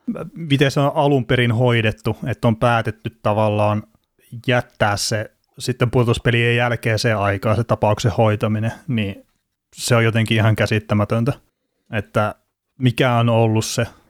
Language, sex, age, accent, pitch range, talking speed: Finnish, male, 30-49, native, 110-125 Hz, 130 wpm